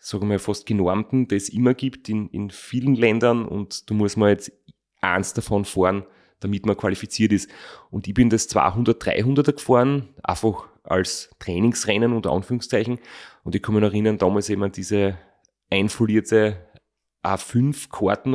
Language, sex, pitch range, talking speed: German, male, 95-115 Hz, 150 wpm